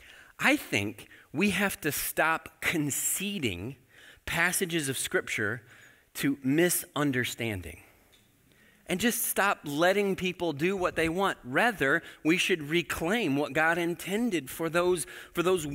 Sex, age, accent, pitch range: male, 30-49, American, 130-185 Hz